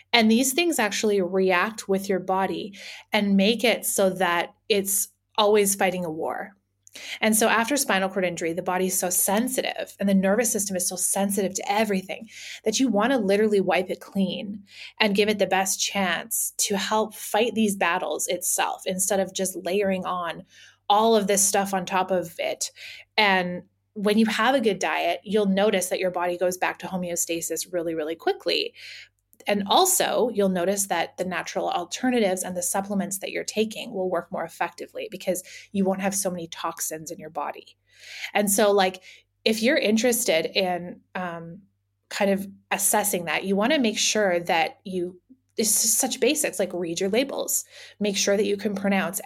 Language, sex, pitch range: English, female, 180-215 Hz